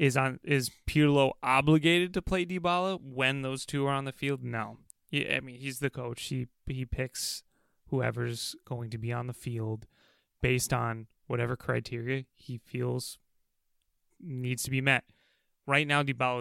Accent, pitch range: American, 120-140 Hz